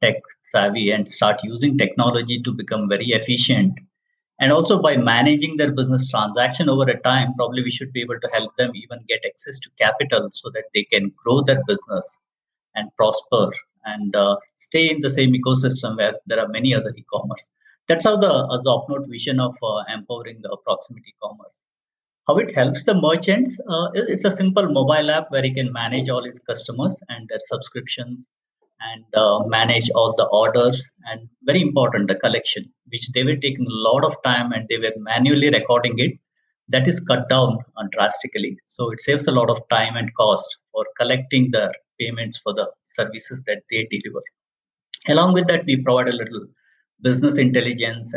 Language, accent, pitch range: English, Indian, 120-150 Hz